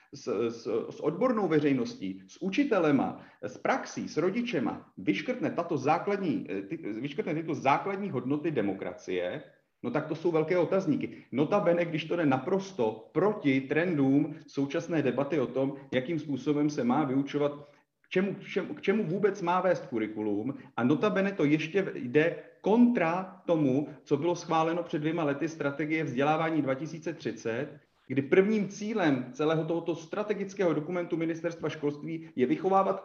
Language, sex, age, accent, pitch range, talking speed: Czech, male, 40-59, native, 145-190 Hz, 145 wpm